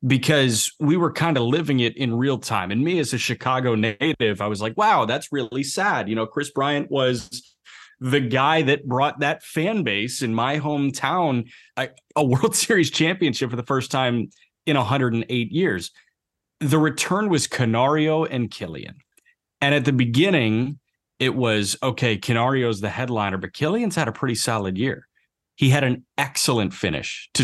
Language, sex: English, male